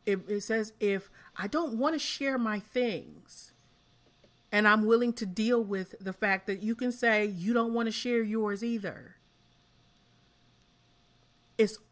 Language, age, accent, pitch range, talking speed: English, 30-49, American, 170-230 Hz, 155 wpm